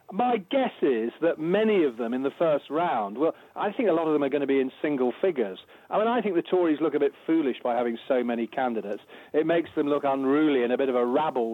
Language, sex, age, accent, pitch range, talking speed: English, male, 40-59, British, 135-180 Hz, 265 wpm